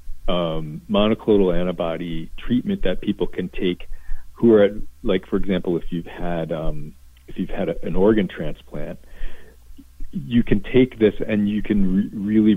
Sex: male